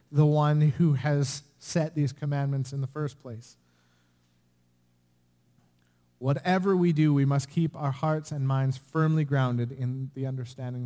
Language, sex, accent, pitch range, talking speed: English, male, American, 90-140 Hz, 145 wpm